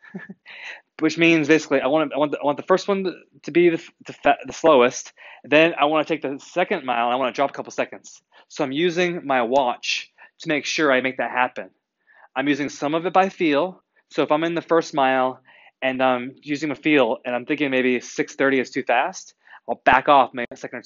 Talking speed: 235 wpm